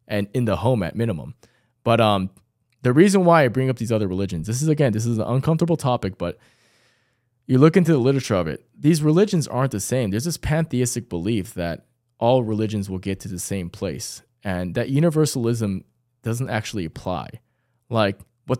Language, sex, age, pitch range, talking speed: English, male, 20-39, 105-130 Hz, 190 wpm